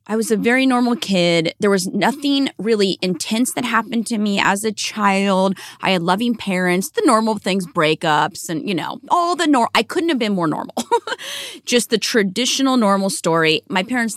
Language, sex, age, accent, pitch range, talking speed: English, female, 30-49, American, 180-250 Hz, 190 wpm